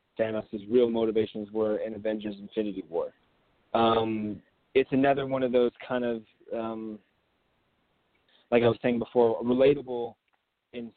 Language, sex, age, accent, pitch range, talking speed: English, male, 20-39, American, 110-130 Hz, 135 wpm